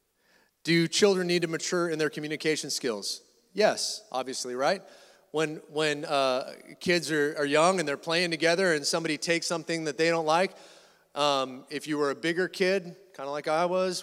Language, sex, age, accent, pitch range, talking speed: English, male, 30-49, American, 160-190 Hz, 185 wpm